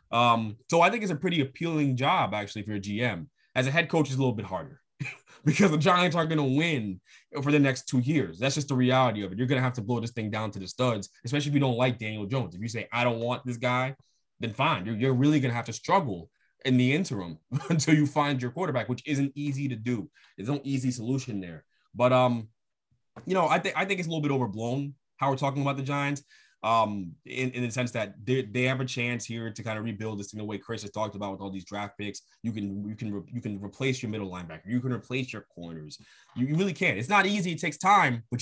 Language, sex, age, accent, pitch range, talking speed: English, male, 20-39, American, 110-145 Hz, 265 wpm